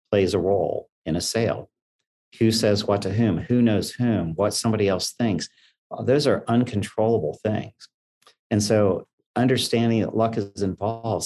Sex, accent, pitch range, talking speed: male, American, 85-110 Hz, 155 wpm